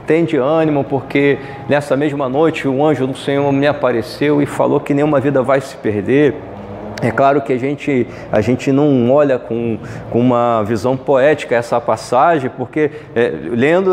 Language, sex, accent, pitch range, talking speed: Portuguese, male, Brazilian, 125-170 Hz, 170 wpm